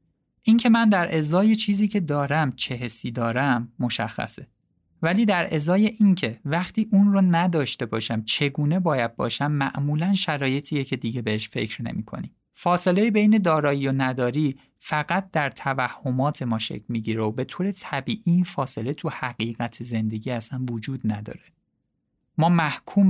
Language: Persian